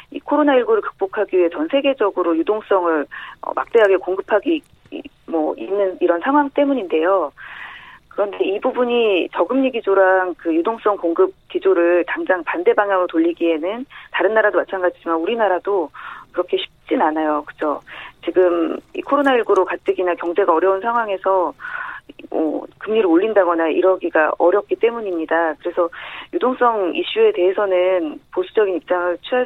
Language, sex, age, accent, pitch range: Korean, female, 40-59, native, 175-250 Hz